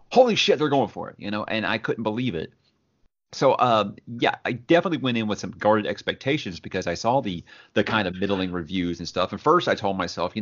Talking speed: 235 wpm